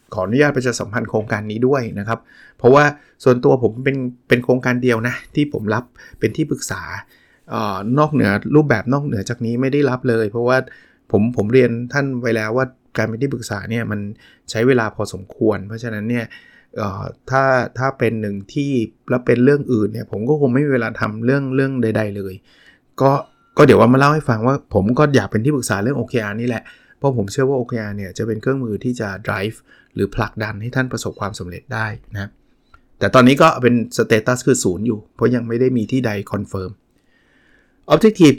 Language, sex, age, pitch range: Thai, male, 20-39, 110-135 Hz